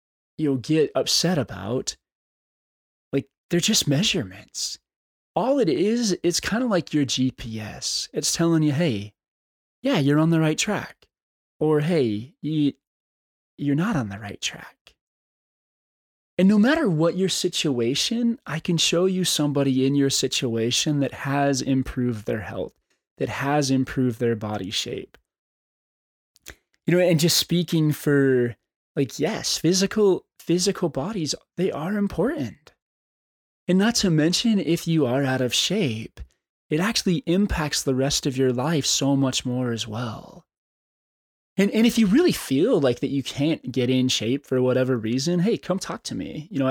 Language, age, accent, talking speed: English, 20-39, American, 155 wpm